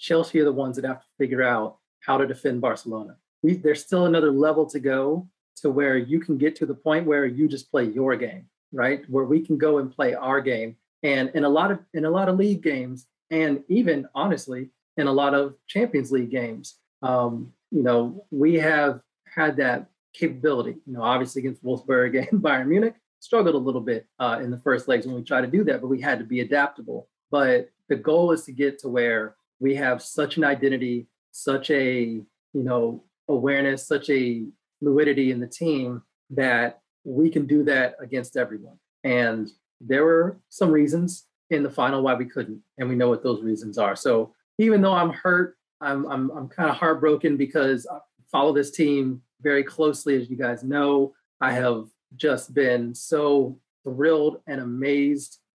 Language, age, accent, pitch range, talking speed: English, 30-49, American, 125-155 Hz, 195 wpm